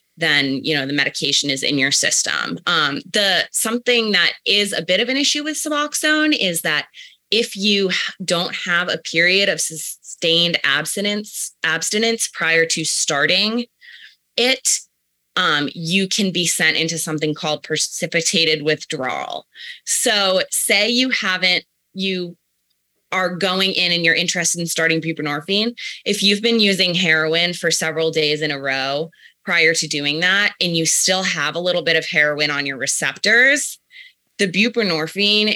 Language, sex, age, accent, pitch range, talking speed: English, female, 20-39, American, 160-210 Hz, 150 wpm